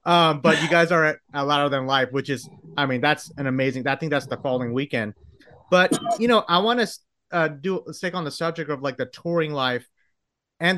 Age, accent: 30-49, American